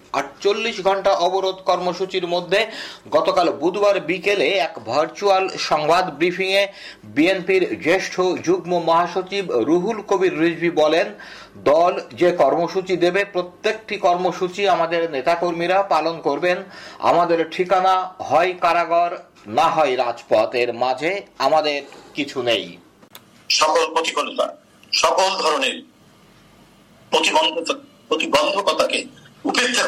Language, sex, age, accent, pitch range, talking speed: Bengali, male, 50-69, native, 175-210 Hz, 30 wpm